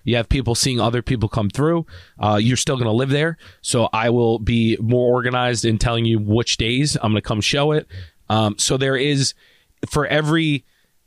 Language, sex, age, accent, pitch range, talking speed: English, male, 30-49, American, 115-135 Hz, 205 wpm